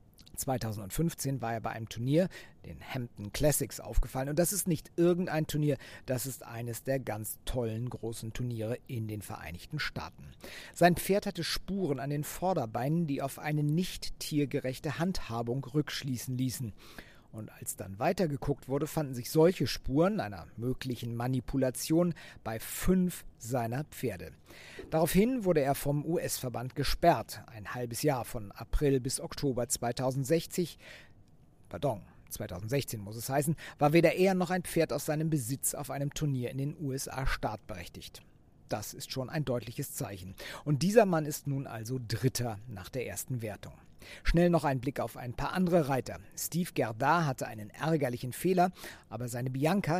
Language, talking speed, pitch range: German, 155 wpm, 120-155 Hz